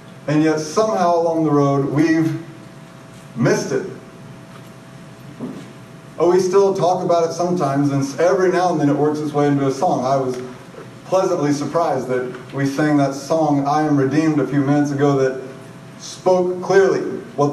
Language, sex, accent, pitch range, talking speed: English, male, American, 140-170 Hz, 165 wpm